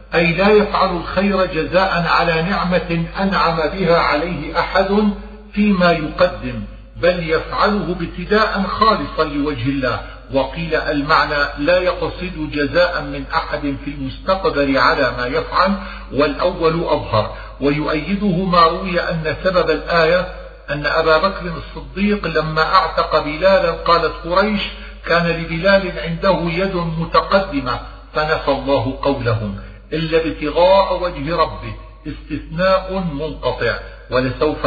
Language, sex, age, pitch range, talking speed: Arabic, male, 50-69, 145-185 Hz, 110 wpm